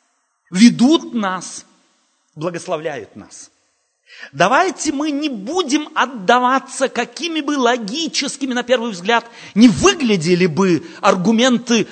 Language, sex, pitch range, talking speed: Russian, male, 180-275 Hz, 95 wpm